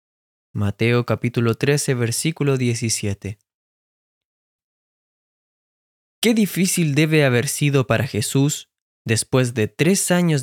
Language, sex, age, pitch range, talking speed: Spanish, male, 20-39, 115-155 Hz, 90 wpm